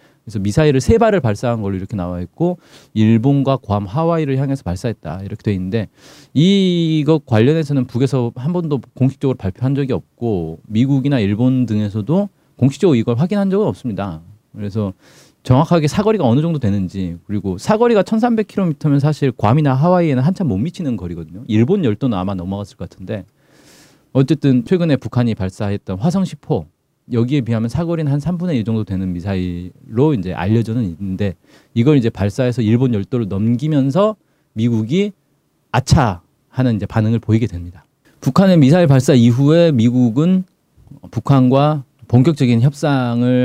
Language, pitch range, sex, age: Korean, 105-150 Hz, male, 40-59